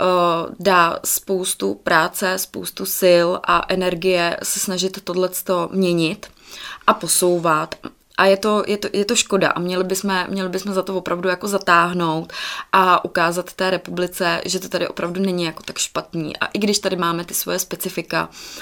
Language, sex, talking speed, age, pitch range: Czech, female, 160 wpm, 20-39, 170-185 Hz